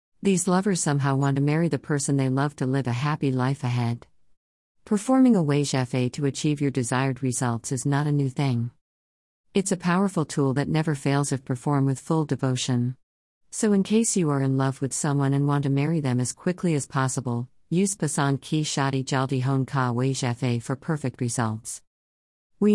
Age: 50-69